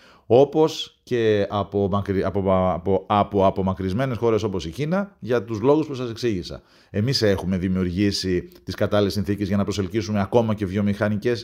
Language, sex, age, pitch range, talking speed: Greek, male, 40-59, 95-115 Hz, 165 wpm